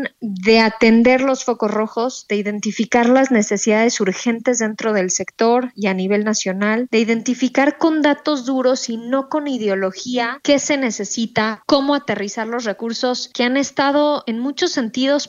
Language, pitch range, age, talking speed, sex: Spanish, 220-265 Hz, 20-39, 155 wpm, female